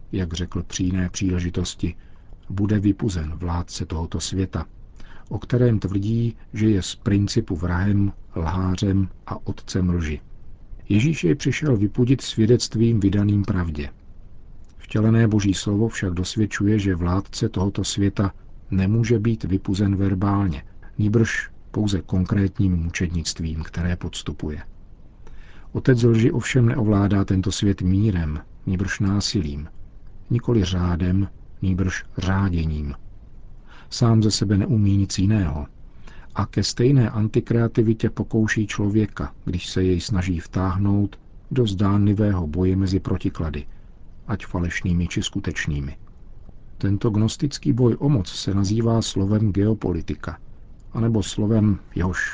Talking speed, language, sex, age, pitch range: 110 wpm, Czech, male, 50-69, 90-110 Hz